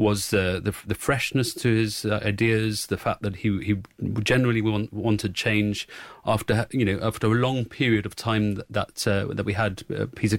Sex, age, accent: male, 30-49, British